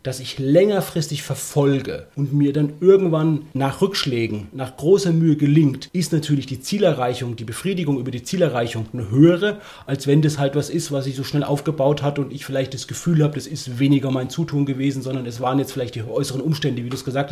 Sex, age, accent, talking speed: male, 30-49, German, 210 wpm